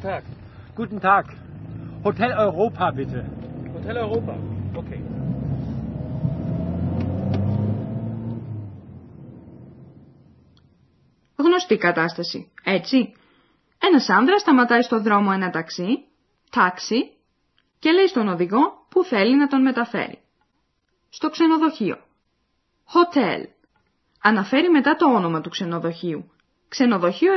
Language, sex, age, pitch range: Greek, female, 20-39, 175-280 Hz